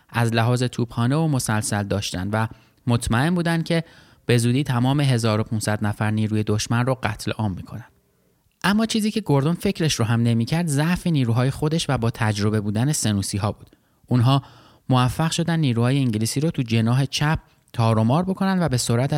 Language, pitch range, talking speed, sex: Persian, 115-155 Hz, 170 wpm, male